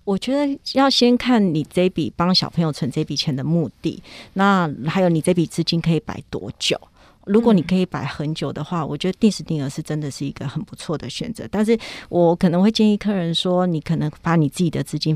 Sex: female